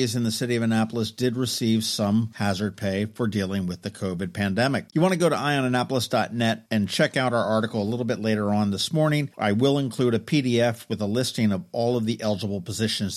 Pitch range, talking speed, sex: 110-145 Hz, 220 wpm, male